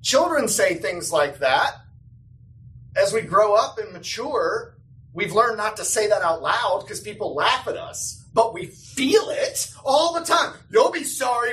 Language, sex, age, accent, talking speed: English, male, 30-49, American, 175 wpm